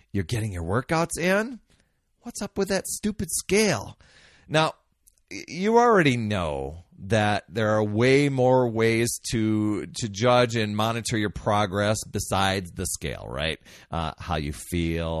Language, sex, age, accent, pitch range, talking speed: English, male, 40-59, American, 90-140 Hz, 140 wpm